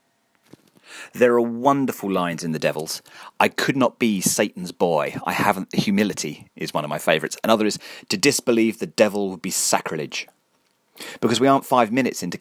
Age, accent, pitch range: 30-49, British, 90-115 Hz